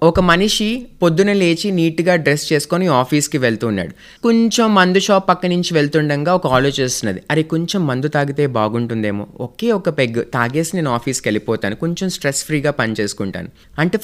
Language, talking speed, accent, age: Telugu, 145 wpm, native, 20-39